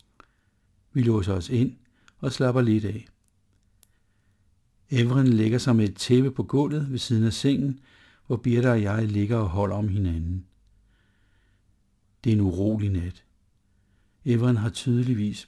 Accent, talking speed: native, 145 wpm